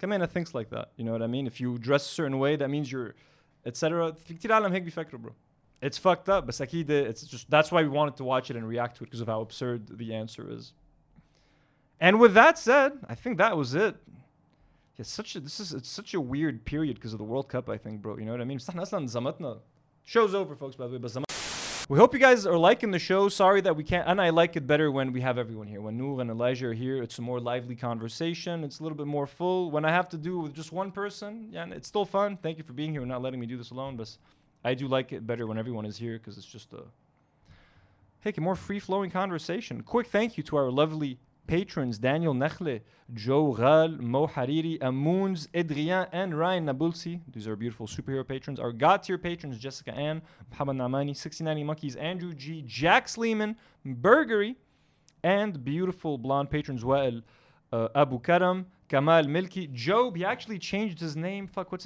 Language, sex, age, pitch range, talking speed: English, male, 20-39, 130-180 Hz, 210 wpm